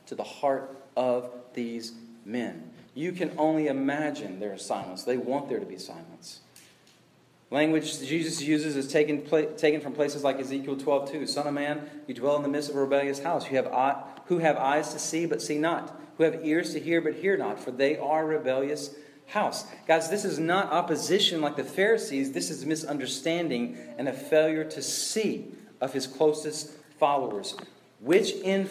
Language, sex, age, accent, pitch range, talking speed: English, male, 40-59, American, 135-165 Hz, 190 wpm